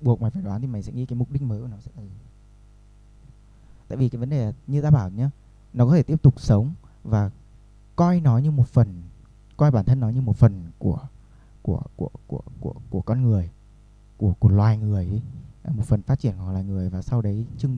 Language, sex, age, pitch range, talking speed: Vietnamese, male, 20-39, 105-130 Hz, 240 wpm